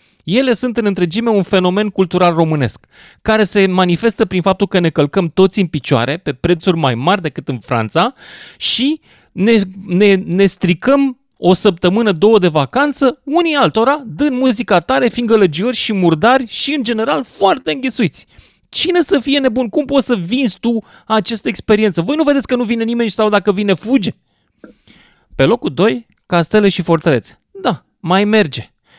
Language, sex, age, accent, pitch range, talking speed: Romanian, male, 30-49, native, 165-235 Hz, 170 wpm